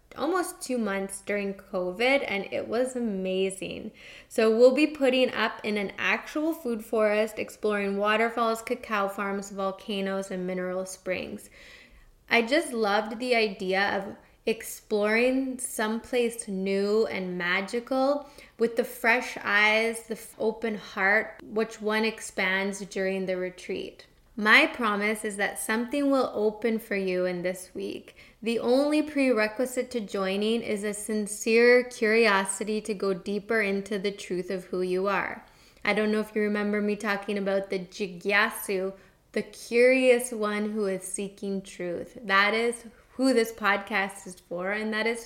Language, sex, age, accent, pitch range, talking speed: English, female, 10-29, American, 195-235 Hz, 145 wpm